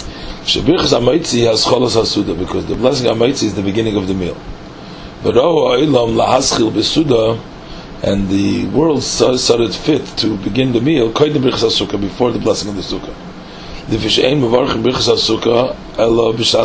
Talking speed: 165 wpm